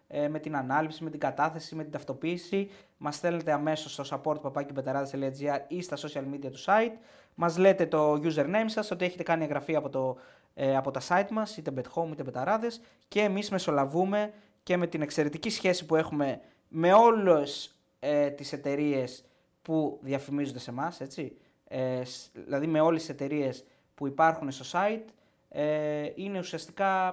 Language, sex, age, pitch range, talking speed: Greek, male, 20-39, 140-185 Hz, 155 wpm